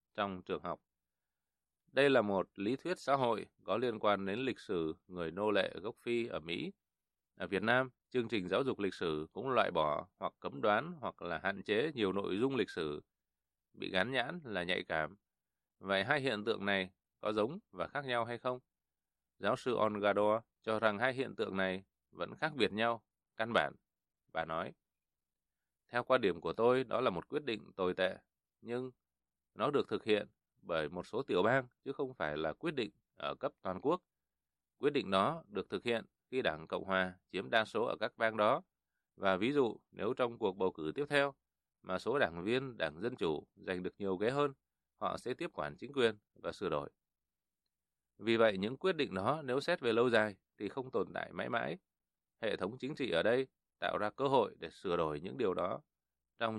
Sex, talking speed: male, 210 wpm